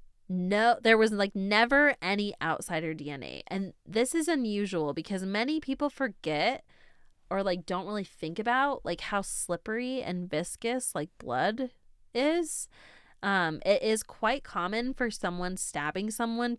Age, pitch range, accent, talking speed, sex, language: 20-39, 170-235 Hz, American, 140 wpm, female, English